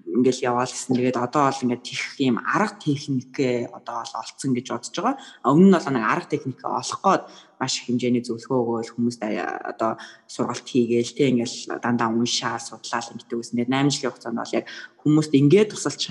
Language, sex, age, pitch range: English, female, 20-39, 125-165 Hz